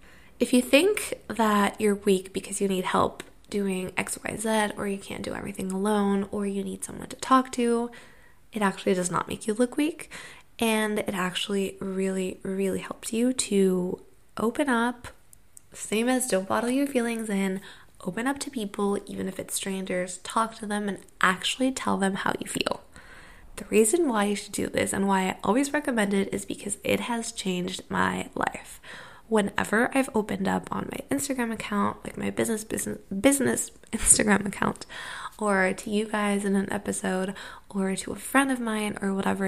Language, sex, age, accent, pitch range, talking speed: English, female, 20-39, American, 195-240 Hz, 180 wpm